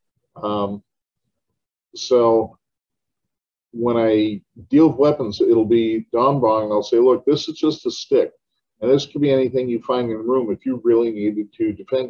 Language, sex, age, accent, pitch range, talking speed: English, male, 50-69, American, 105-155 Hz, 170 wpm